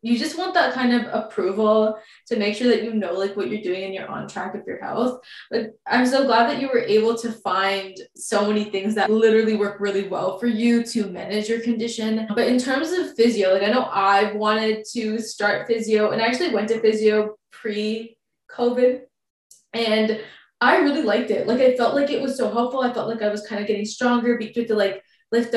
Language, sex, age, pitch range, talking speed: English, female, 20-39, 210-245 Hz, 215 wpm